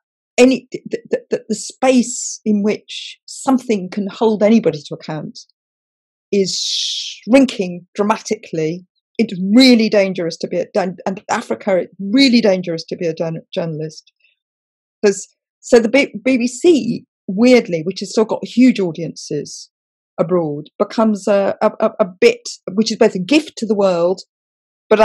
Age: 40-59